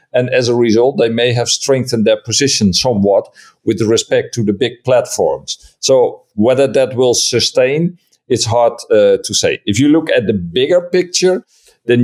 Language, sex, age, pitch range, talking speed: Bulgarian, male, 50-69, 115-160 Hz, 175 wpm